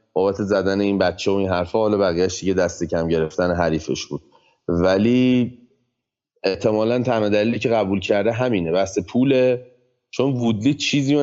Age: 30-49